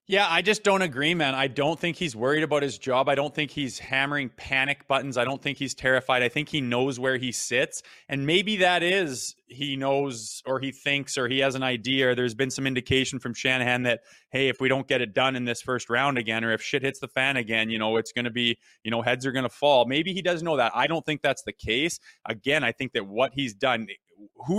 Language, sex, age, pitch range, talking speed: English, male, 20-39, 115-140 Hz, 260 wpm